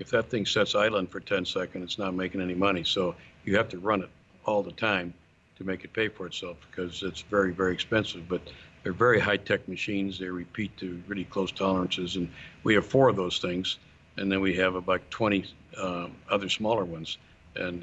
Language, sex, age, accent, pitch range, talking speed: English, male, 60-79, American, 85-100 Hz, 210 wpm